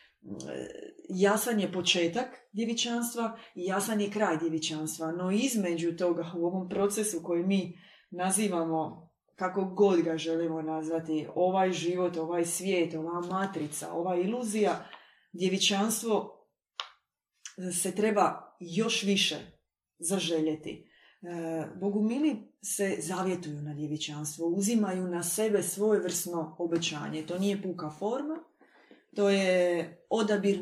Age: 20-39